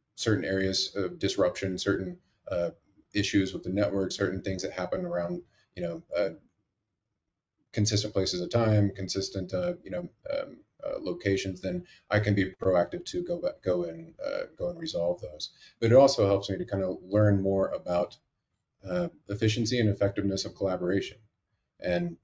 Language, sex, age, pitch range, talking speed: English, male, 30-49, 90-110 Hz, 165 wpm